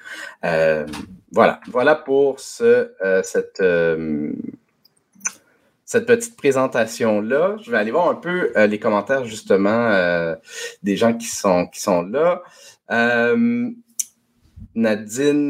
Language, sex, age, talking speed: French, male, 30-49, 105 wpm